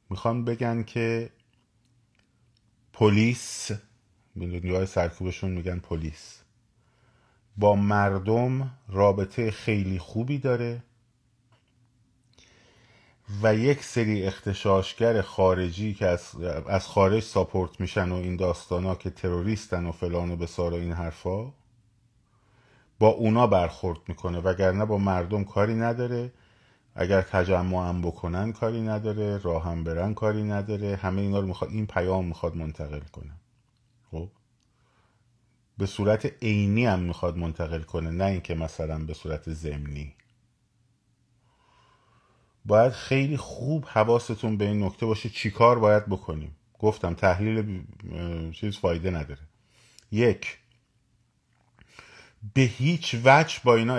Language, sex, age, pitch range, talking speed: Persian, male, 30-49, 90-115 Hz, 115 wpm